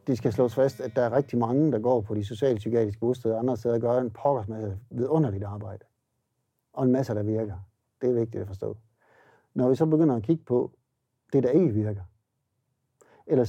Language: Danish